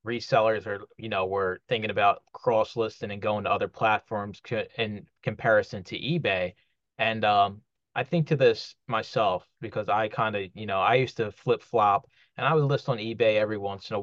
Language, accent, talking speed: English, American, 195 wpm